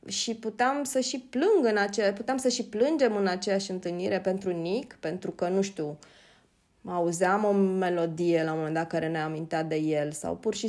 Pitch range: 180-275 Hz